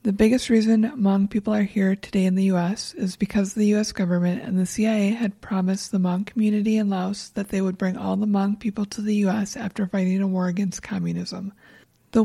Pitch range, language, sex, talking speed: 185-210 Hz, English, female, 215 wpm